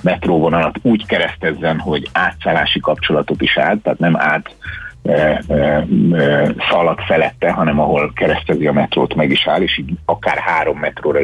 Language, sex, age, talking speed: Hungarian, male, 60-79, 140 wpm